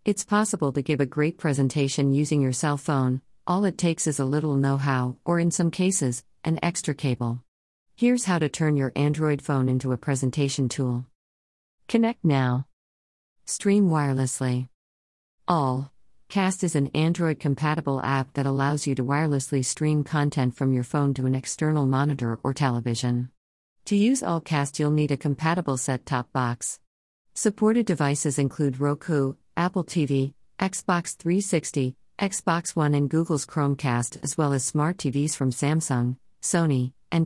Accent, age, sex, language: American, 50-69, female, Hindi